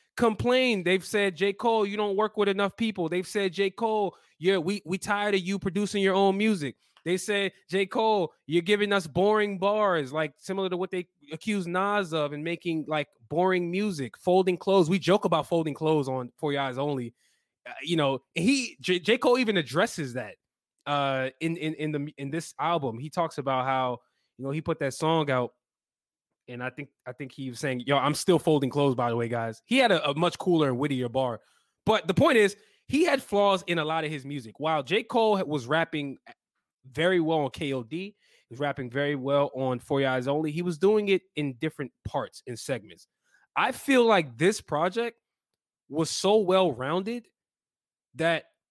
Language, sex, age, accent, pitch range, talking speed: English, male, 20-39, American, 140-195 Hz, 200 wpm